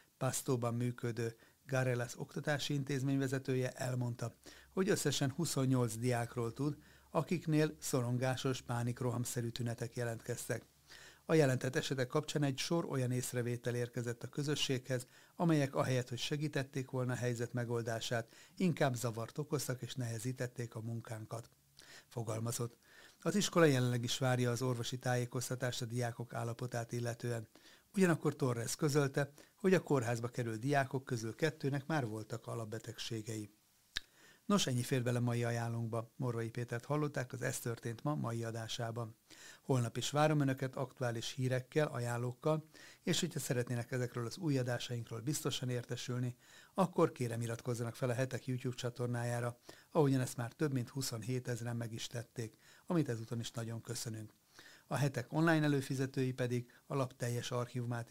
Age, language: 60-79, Hungarian